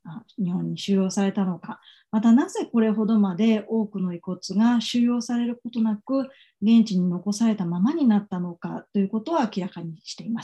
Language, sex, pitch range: Japanese, female, 195-245 Hz